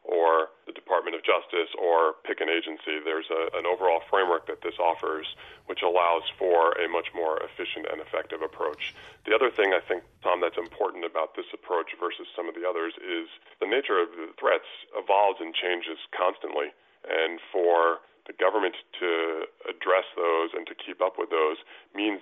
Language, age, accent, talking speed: English, 30-49, American, 180 wpm